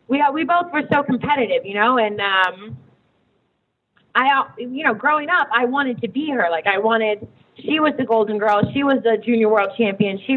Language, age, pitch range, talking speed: English, 20-39, 200-245 Hz, 210 wpm